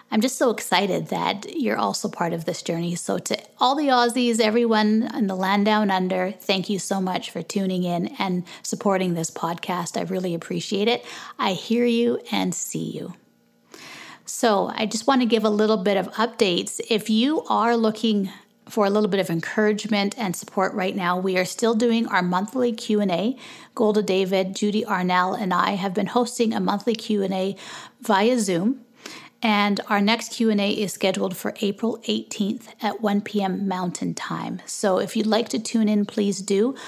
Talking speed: 180 wpm